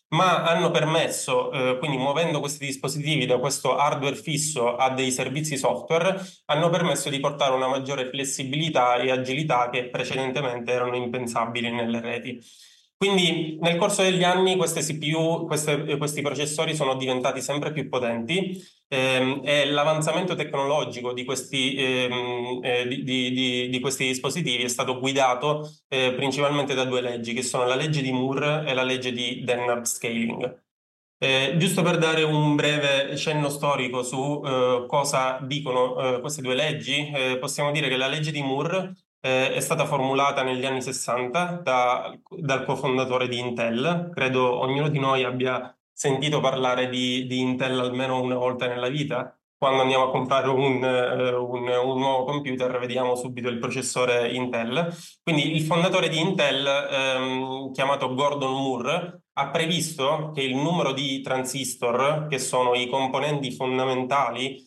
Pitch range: 125-150 Hz